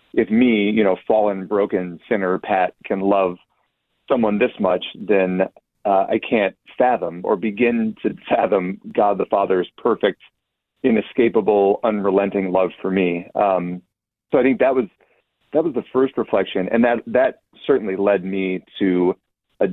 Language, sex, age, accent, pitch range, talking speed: English, male, 40-59, American, 95-115 Hz, 150 wpm